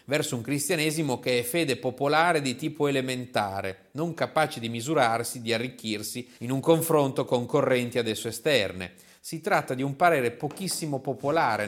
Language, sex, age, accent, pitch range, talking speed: Italian, male, 40-59, native, 110-155 Hz, 155 wpm